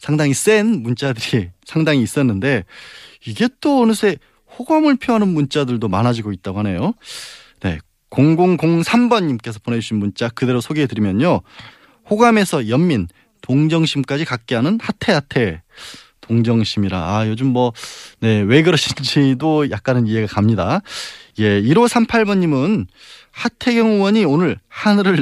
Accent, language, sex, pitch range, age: native, Korean, male, 120-180 Hz, 20-39